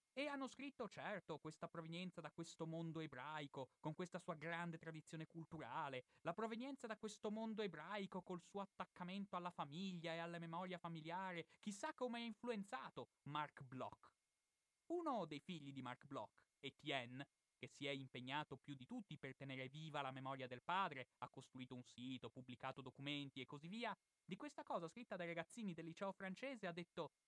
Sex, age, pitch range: male, 30-49, 135-200 Hz